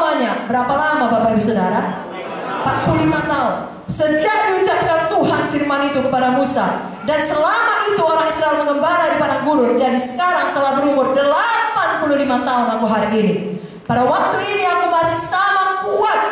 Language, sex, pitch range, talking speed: English, female, 260-345 Hz, 145 wpm